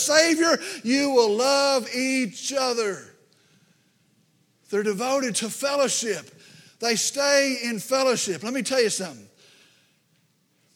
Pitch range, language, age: 185-270 Hz, English, 50-69